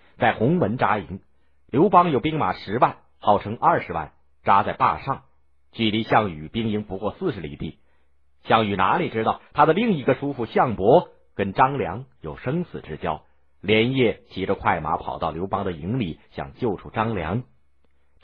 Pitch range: 75-120 Hz